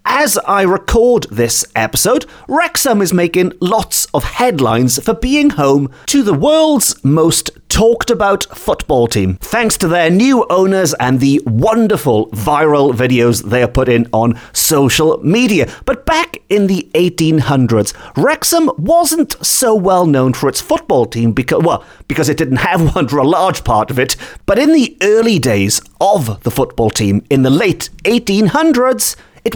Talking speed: 160 wpm